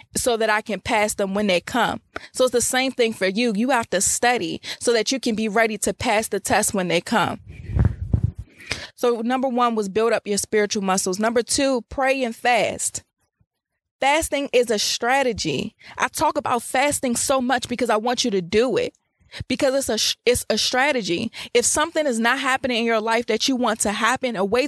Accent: American